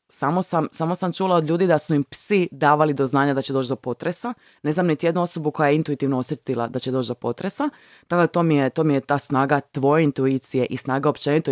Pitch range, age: 140-185 Hz, 20-39